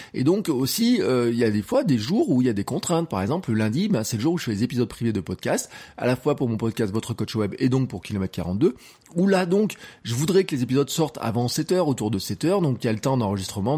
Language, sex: French, male